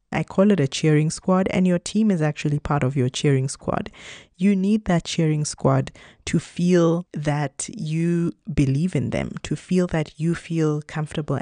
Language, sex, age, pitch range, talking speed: English, female, 20-39, 140-165 Hz, 180 wpm